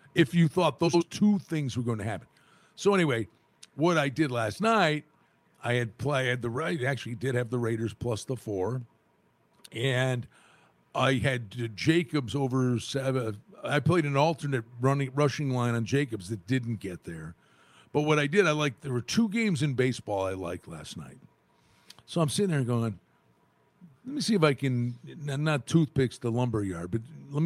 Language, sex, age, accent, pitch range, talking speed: English, male, 50-69, American, 115-150 Hz, 185 wpm